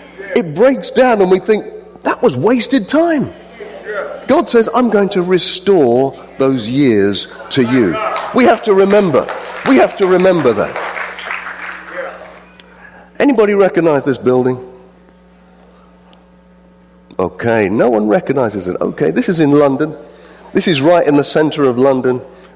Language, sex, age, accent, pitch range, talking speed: English, male, 40-59, British, 120-185 Hz, 135 wpm